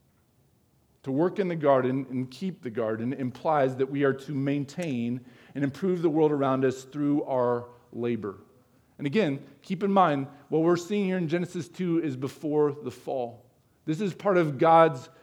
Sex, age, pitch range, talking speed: male, 40-59, 135-190 Hz, 175 wpm